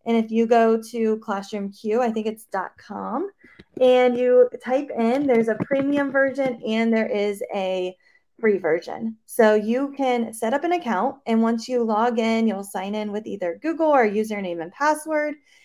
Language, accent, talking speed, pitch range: English, American, 180 wpm, 210-265 Hz